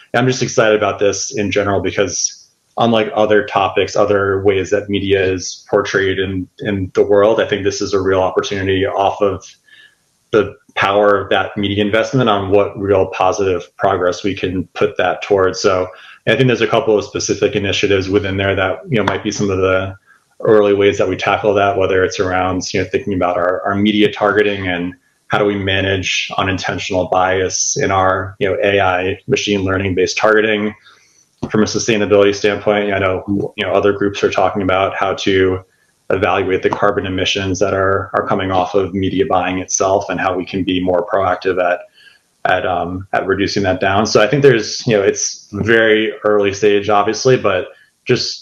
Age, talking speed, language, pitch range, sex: 30-49, 190 wpm, English, 95-105 Hz, male